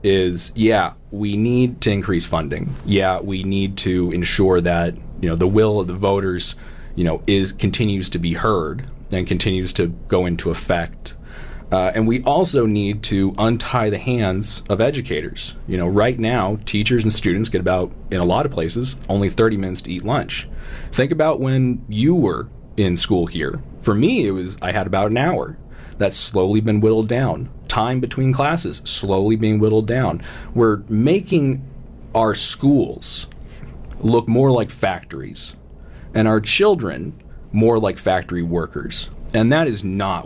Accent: American